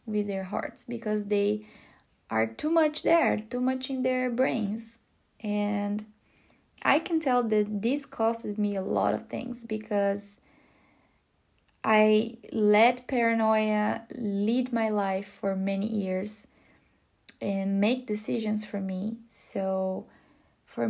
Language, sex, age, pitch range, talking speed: English, female, 20-39, 200-230 Hz, 125 wpm